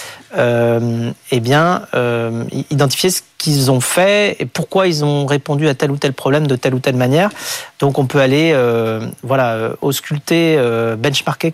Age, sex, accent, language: 40-59, male, French, French